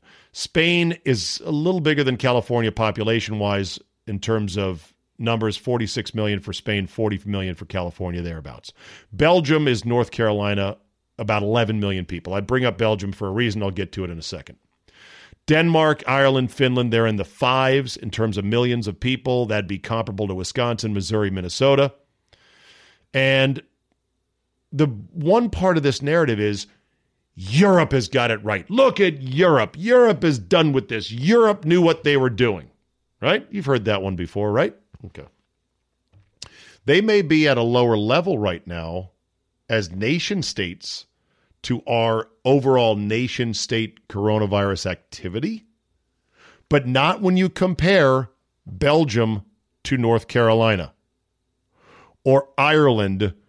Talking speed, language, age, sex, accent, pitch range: 145 wpm, English, 50-69, male, American, 100-135 Hz